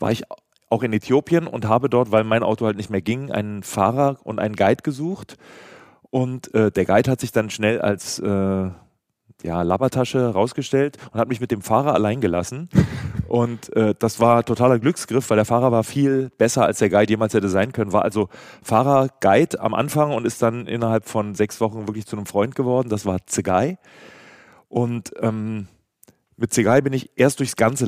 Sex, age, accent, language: male, 40-59, German, German